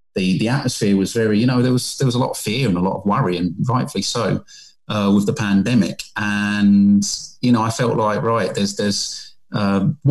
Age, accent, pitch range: 30-49, British, 100-125 Hz